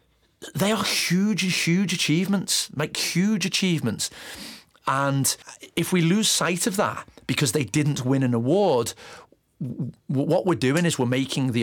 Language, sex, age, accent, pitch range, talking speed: English, male, 40-59, British, 115-155 Hz, 145 wpm